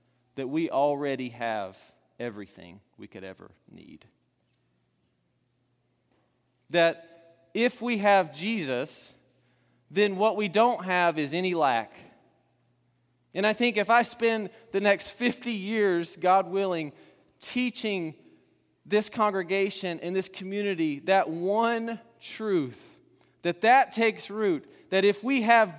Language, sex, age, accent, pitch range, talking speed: English, male, 30-49, American, 145-210 Hz, 120 wpm